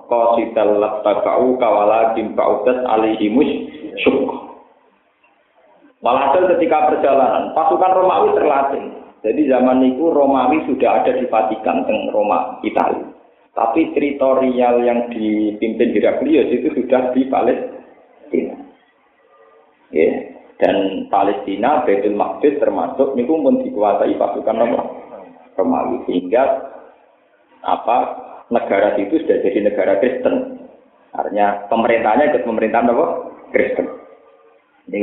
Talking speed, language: 100 wpm, Indonesian